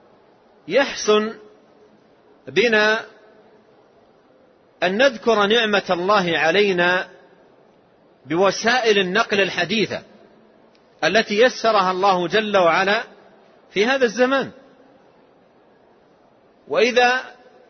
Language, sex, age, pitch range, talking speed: Arabic, male, 40-59, 205-245 Hz, 65 wpm